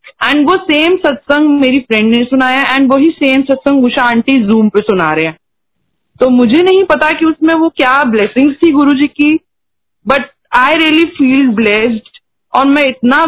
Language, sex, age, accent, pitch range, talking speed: Hindi, female, 20-39, native, 225-270 Hz, 175 wpm